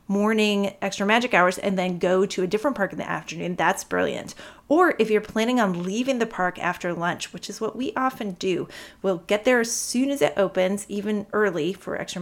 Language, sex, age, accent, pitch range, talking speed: English, female, 30-49, American, 185-245 Hz, 215 wpm